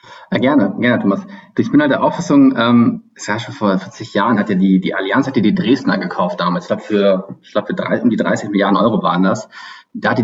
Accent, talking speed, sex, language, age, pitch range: German, 260 wpm, male, German, 30-49, 100-160 Hz